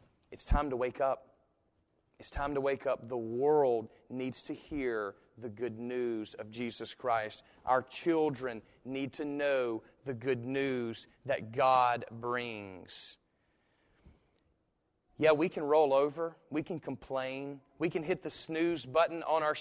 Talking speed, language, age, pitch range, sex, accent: 145 wpm, English, 30-49, 125-170 Hz, male, American